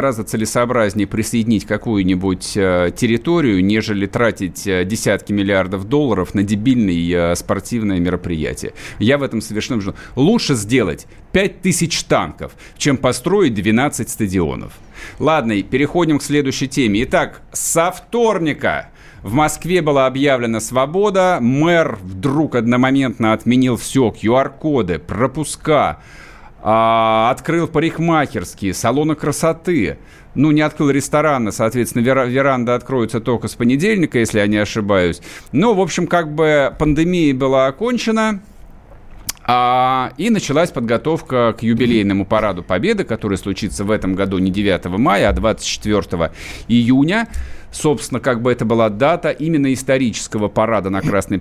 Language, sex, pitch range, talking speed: Russian, male, 105-150 Hz, 125 wpm